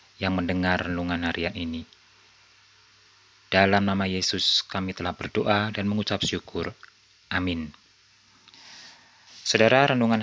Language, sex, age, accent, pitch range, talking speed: Indonesian, male, 30-49, native, 95-110 Hz, 100 wpm